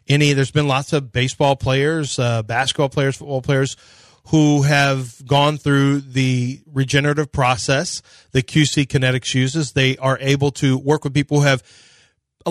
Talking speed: 160 wpm